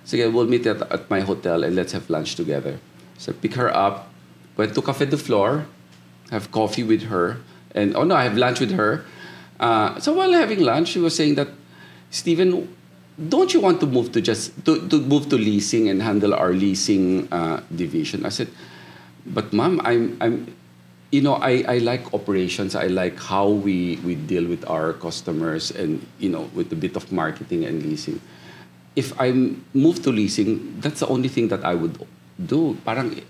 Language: Filipino